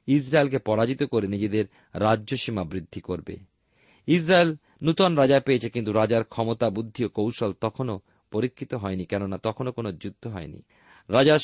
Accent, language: native, Bengali